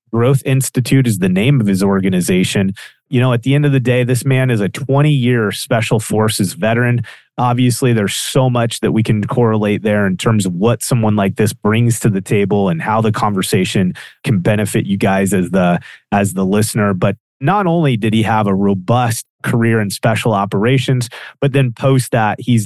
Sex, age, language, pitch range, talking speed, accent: male, 30-49, English, 105-135 Hz, 195 wpm, American